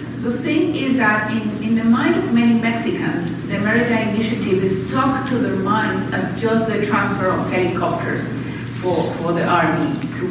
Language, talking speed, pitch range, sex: English, 175 wpm, 185-230 Hz, female